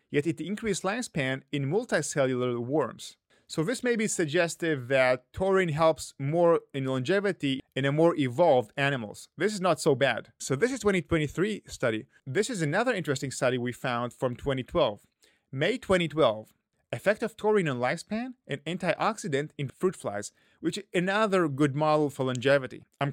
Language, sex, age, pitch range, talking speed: English, male, 30-49, 130-190 Hz, 160 wpm